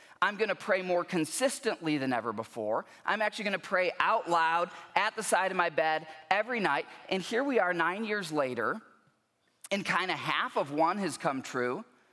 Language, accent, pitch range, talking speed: English, American, 165-210 Hz, 200 wpm